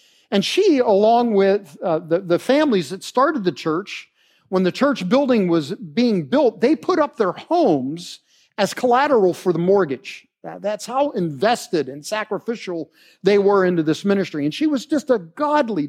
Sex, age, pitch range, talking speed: male, 50-69, 185-255 Hz, 170 wpm